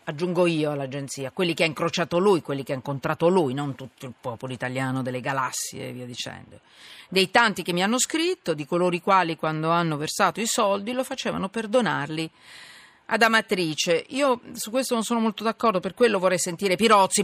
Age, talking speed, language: 40-59, 195 wpm, Italian